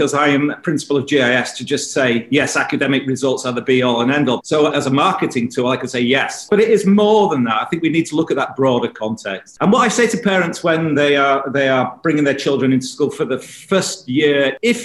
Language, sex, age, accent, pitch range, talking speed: English, male, 40-59, British, 130-170 Hz, 265 wpm